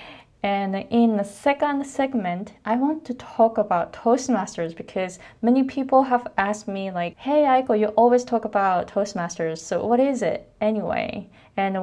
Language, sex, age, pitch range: Japanese, female, 20-39, 185-230 Hz